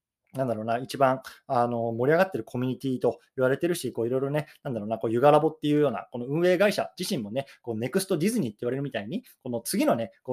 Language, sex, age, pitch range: Japanese, male, 20-39, 115-150 Hz